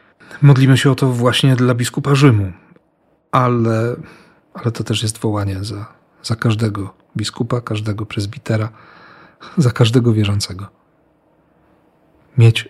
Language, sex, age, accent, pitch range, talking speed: Polish, male, 40-59, native, 110-130 Hz, 115 wpm